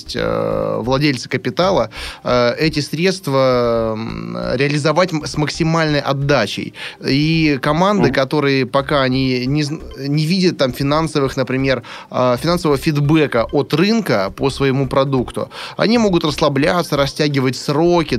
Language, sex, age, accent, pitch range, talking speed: Russian, male, 20-39, native, 125-150 Hz, 100 wpm